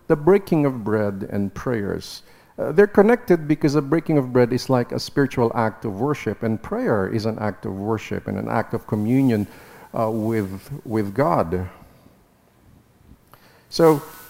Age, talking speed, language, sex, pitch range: 50-69, 160 wpm, English, male, 110-150 Hz